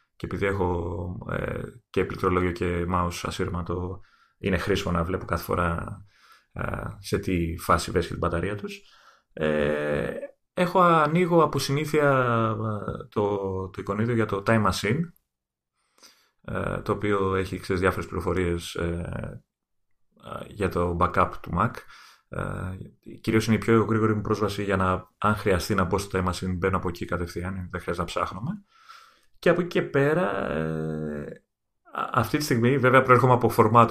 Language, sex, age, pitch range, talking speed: Greek, male, 30-49, 90-125 Hz, 150 wpm